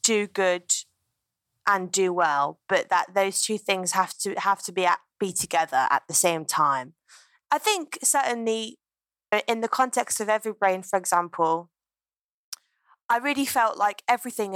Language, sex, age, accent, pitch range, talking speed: English, female, 20-39, British, 180-220 Hz, 155 wpm